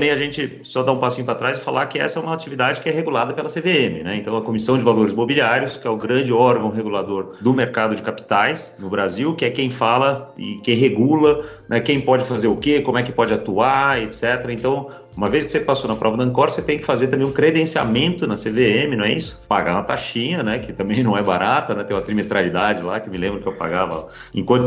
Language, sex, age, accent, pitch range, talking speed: Portuguese, male, 40-59, Brazilian, 110-135 Hz, 250 wpm